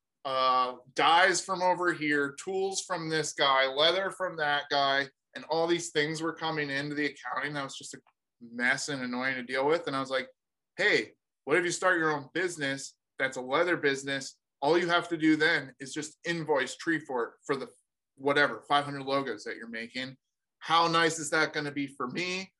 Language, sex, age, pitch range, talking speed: English, male, 20-39, 135-165 Hz, 200 wpm